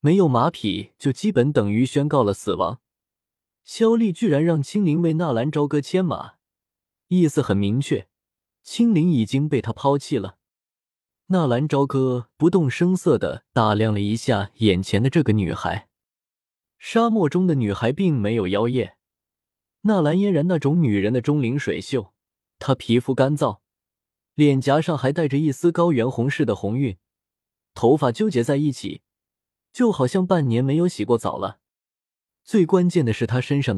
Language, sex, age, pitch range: Chinese, male, 20-39, 105-165 Hz